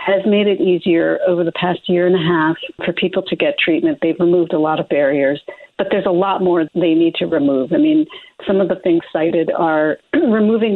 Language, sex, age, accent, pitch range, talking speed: English, female, 50-69, American, 170-235 Hz, 225 wpm